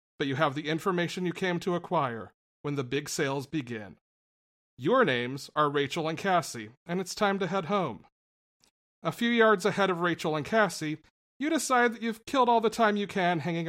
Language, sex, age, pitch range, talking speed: English, male, 40-59, 140-205 Hz, 195 wpm